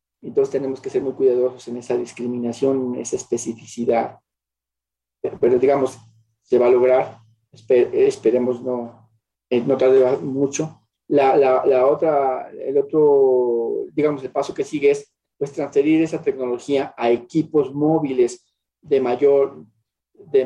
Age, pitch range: 40-59, 125-195 Hz